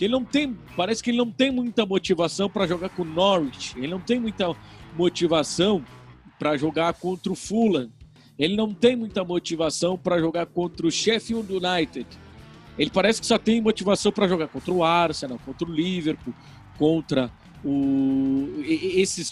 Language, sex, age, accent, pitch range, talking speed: Portuguese, male, 50-69, Brazilian, 160-230 Hz, 160 wpm